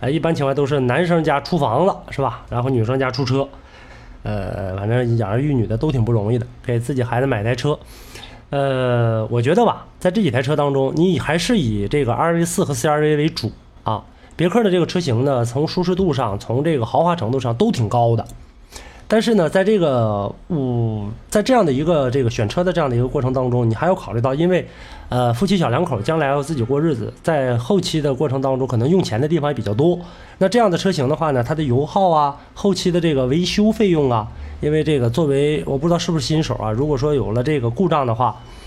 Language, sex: Chinese, male